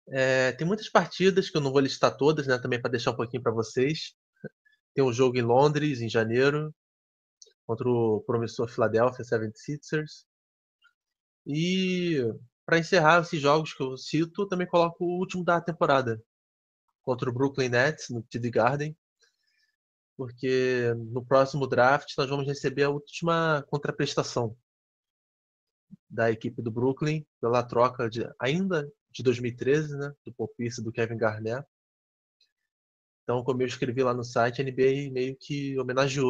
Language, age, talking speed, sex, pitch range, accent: Portuguese, 20-39, 145 wpm, male, 115-150 Hz, Brazilian